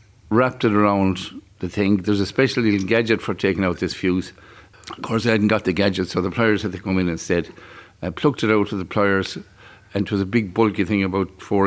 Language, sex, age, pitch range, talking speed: English, male, 50-69, 95-110 Hz, 235 wpm